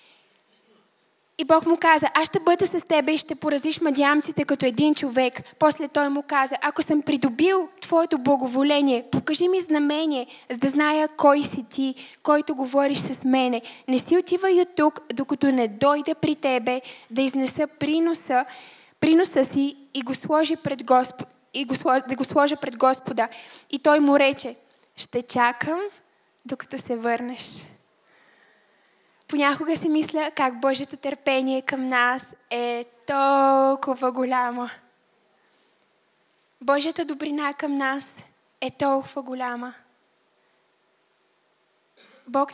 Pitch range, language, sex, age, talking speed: 260-305 Hz, Bulgarian, female, 10-29, 135 wpm